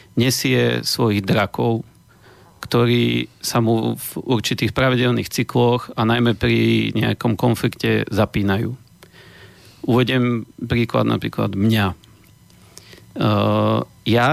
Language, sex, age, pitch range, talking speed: Slovak, male, 40-59, 110-125 Hz, 90 wpm